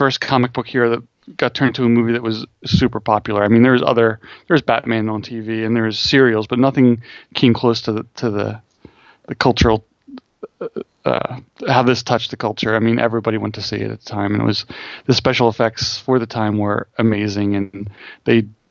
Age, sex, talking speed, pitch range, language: 30-49, male, 205 wpm, 110-125 Hz, English